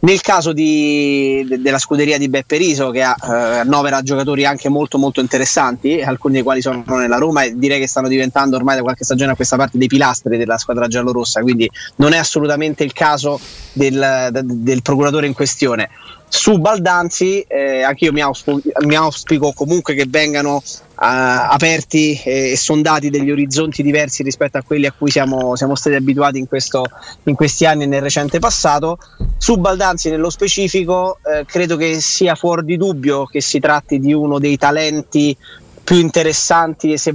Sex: male